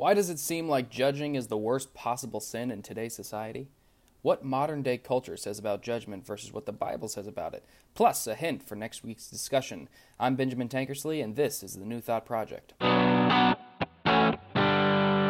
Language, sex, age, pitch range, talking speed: English, male, 20-39, 105-135 Hz, 175 wpm